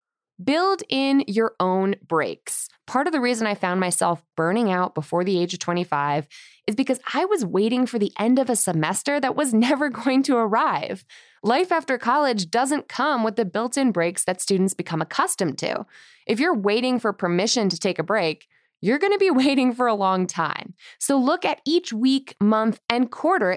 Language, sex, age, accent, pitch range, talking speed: English, female, 20-39, American, 190-280 Hz, 195 wpm